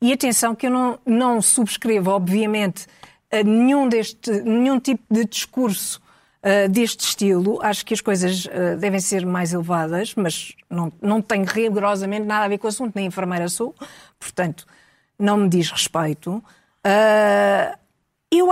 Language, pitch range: Portuguese, 195-275 Hz